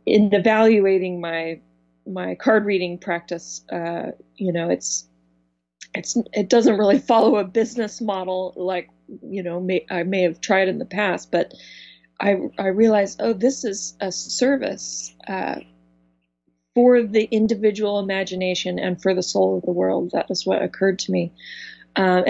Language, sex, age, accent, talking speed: English, female, 30-49, American, 160 wpm